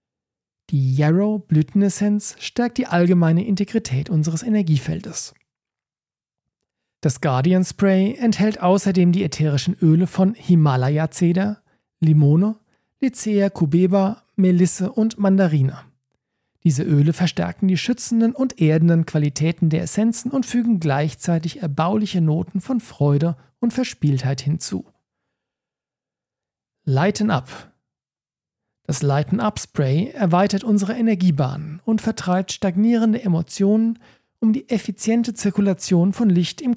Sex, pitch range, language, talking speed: male, 155-210 Hz, German, 100 wpm